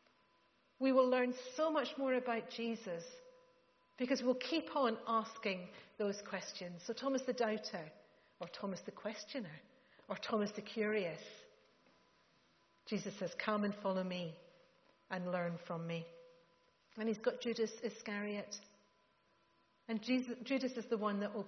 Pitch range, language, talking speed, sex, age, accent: 180-230 Hz, English, 140 wpm, female, 40-59, British